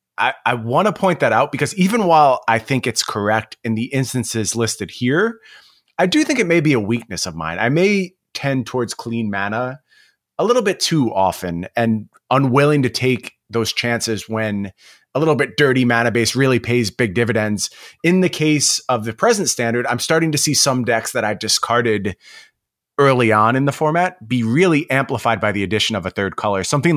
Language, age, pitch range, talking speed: English, 30-49, 110-135 Hz, 200 wpm